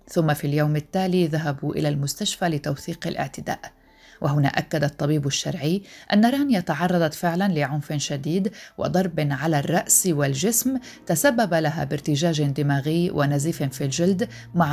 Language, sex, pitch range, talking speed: Arabic, female, 145-180 Hz, 125 wpm